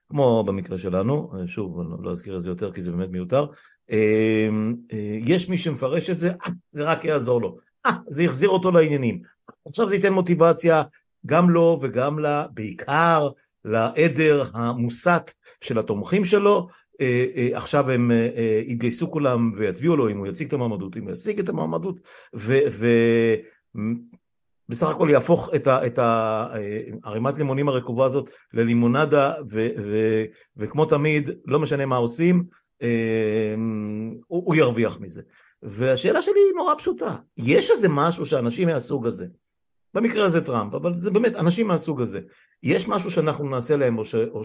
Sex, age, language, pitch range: male, 50-69, Hebrew, 110-170 Hz